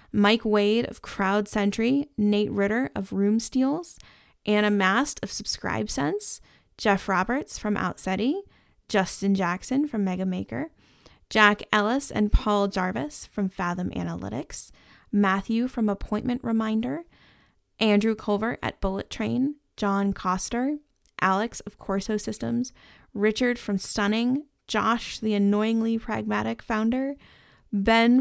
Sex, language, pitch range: female, English, 205-245 Hz